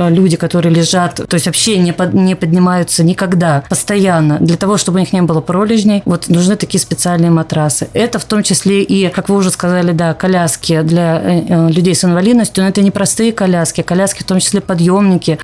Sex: female